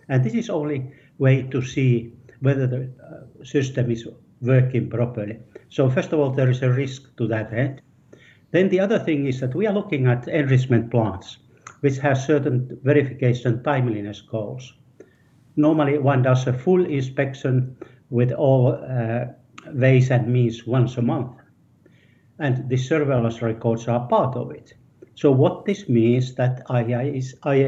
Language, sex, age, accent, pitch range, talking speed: English, male, 60-79, Finnish, 120-145 Hz, 155 wpm